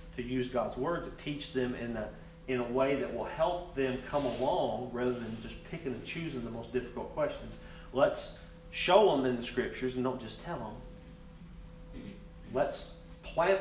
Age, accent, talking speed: 40-59, American, 175 wpm